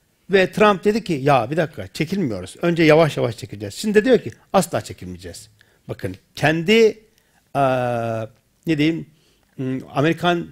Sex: male